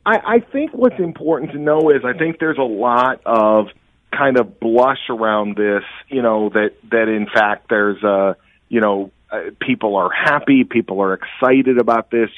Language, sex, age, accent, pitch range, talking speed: English, male, 40-59, American, 115-155 Hz, 185 wpm